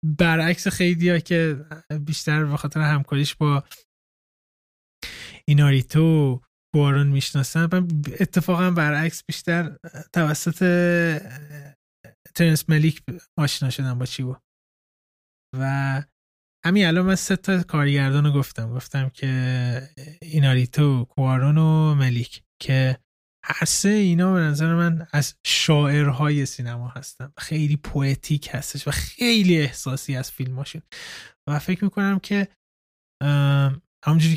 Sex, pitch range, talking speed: male, 135-160 Hz, 105 wpm